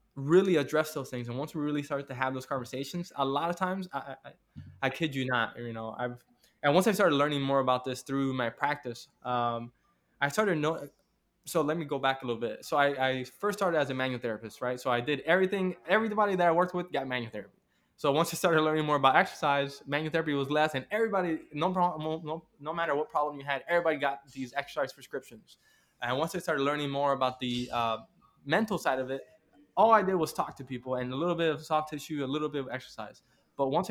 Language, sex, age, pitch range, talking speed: English, male, 20-39, 125-155 Hz, 235 wpm